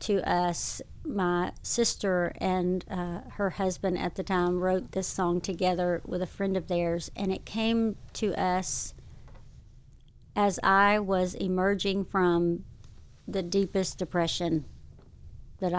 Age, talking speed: 50-69, 130 wpm